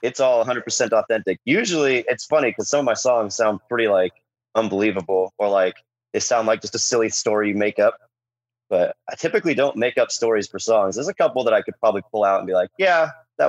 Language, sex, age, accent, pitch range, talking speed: English, male, 30-49, American, 95-120 Hz, 230 wpm